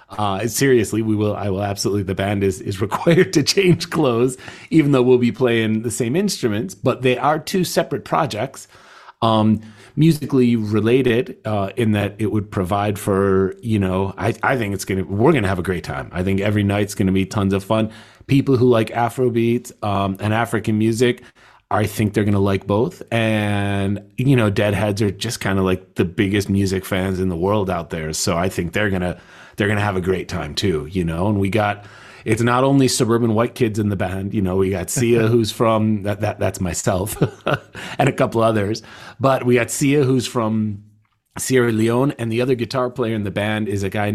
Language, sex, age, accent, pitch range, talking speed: English, male, 30-49, American, 100-120 Hz, 210 wpm